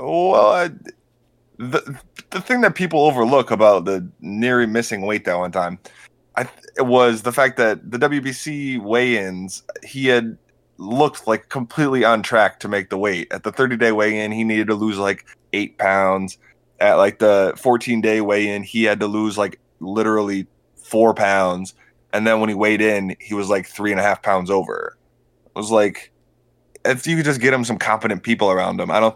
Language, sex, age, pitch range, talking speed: English, male, 20-39, 100-120 Hz, 185 wpm